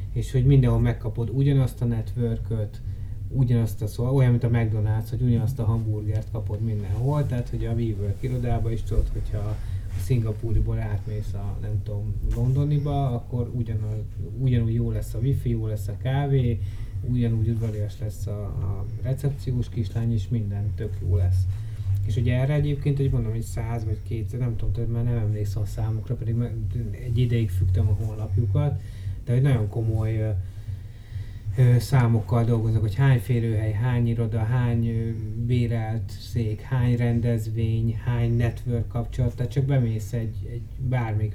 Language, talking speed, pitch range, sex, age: Hungarian, 160 wpm, 105-120 Hz, male, 20-39